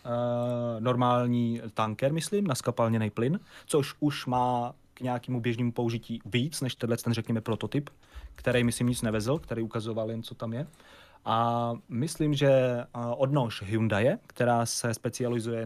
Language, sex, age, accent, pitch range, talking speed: Czech, male, 30-49, native, 115-135 Hz, 140 wpm